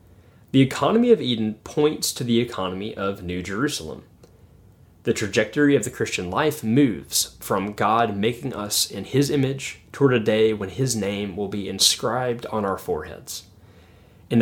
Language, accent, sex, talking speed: English, American, male, 160 wpm